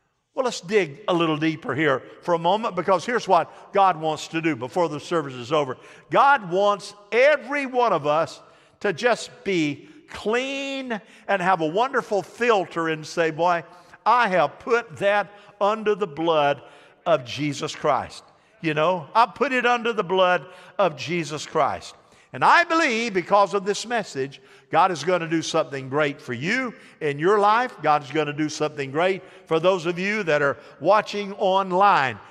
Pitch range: 165-225 Hz